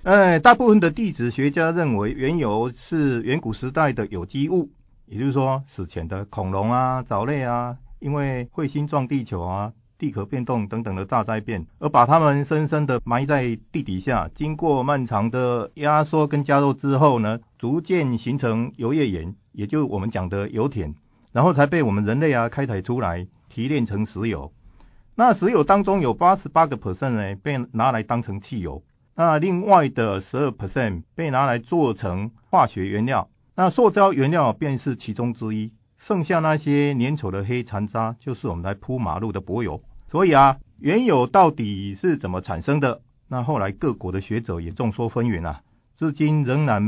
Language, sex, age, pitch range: Chinese, male, 50-69, 105-145 Hz